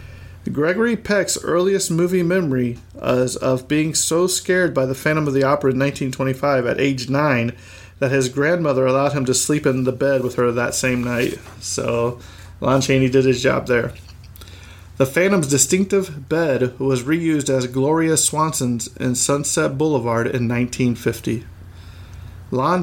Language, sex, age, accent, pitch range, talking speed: English, male, 40-59, American, 120-150 Hz, 150 wpm